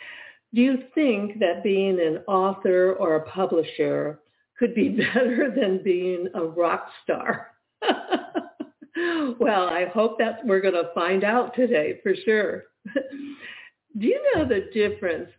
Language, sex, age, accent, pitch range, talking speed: English, female, 60-79, American, 160-230 Hz, 135 wpm